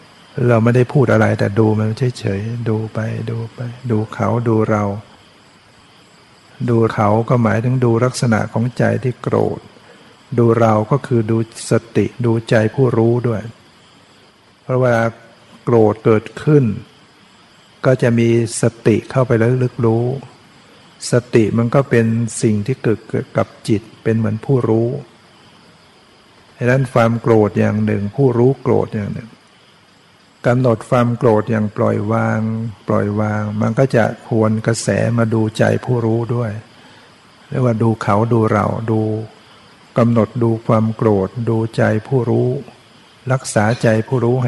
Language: Thai